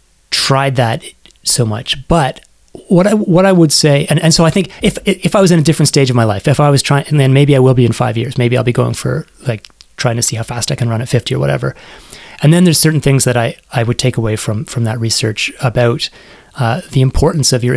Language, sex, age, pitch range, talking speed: English, male, 30-49, 120-145 Hz, 265 wpm